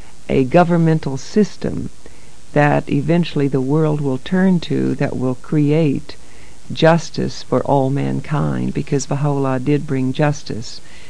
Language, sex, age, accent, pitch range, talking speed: English, female, 60-79, American, 130-150 Hz, 120 wpm